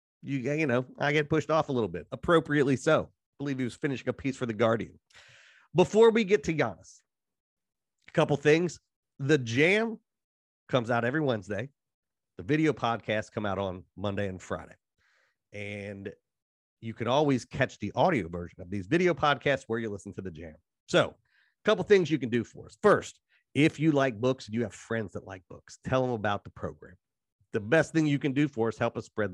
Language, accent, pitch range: English, American, 105-150 Hz